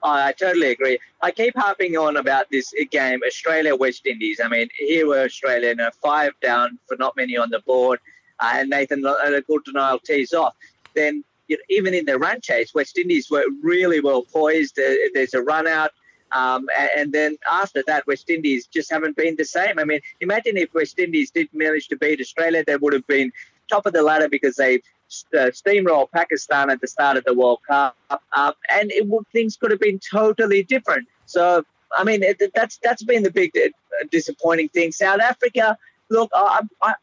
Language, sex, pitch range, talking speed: English, male, 140-200 Hz, 205 wpm